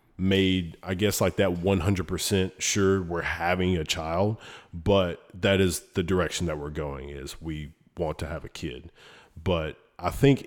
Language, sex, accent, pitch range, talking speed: English, male, American, 80-95 Hz, 165 wpm